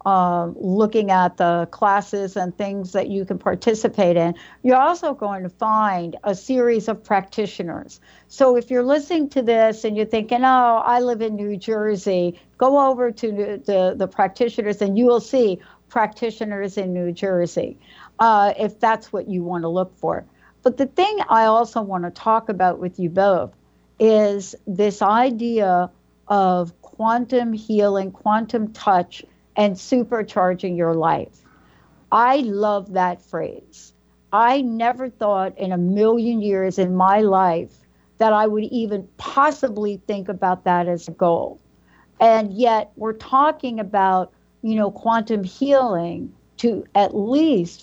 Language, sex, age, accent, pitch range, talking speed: English, female, 60-79, American, 190-235 Hz, 150 wpm